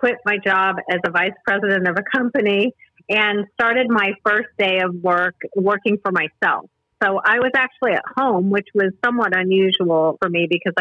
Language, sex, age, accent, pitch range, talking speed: English, female, 40-59, American, 185-230 Hz, 185 wpm